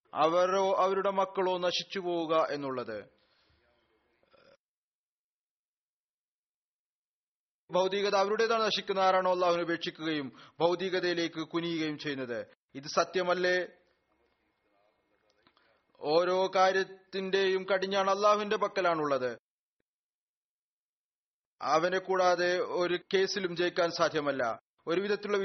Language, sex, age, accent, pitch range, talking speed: Malayalam, male, 30-49, native, 165-190 Hz, 65 wpm